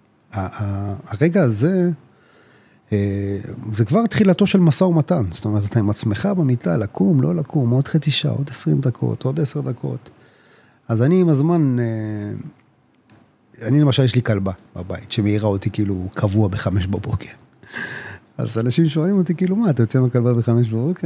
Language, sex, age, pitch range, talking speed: Hebrew, male, 30-49, 110-150 Hz, 150 wpm